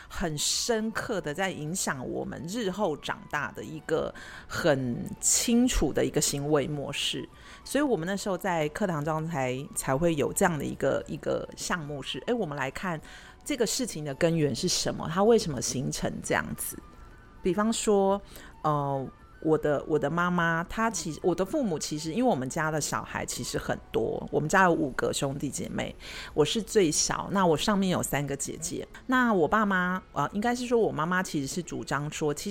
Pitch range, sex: 150-210 Hz, female